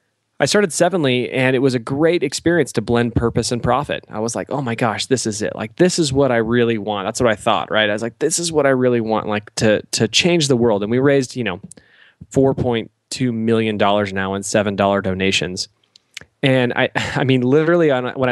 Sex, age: male, 20-39